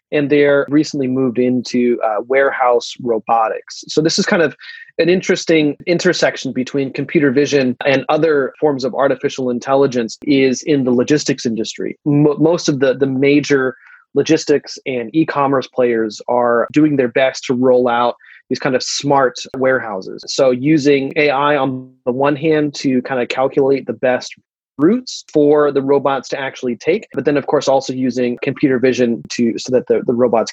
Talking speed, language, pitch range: 170 wpm, English, 125-150 Hz